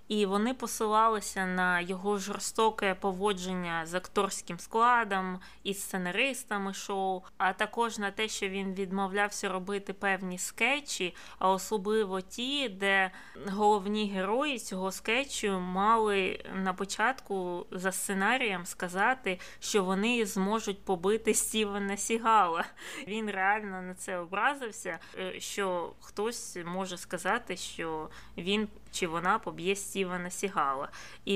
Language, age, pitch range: Ukrainian, 20-39, 185-220 Hz